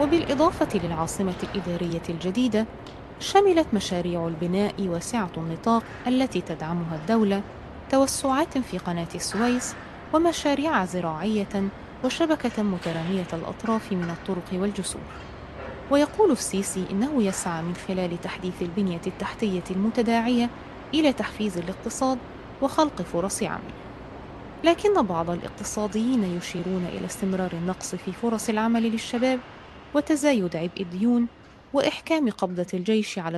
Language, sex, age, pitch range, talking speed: Arabic, female, 20-39, 180-250 Hz, 105 wpm